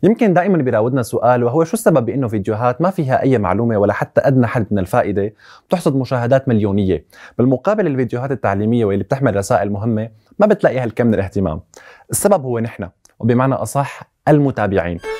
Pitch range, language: 110-160 Hz, Arabic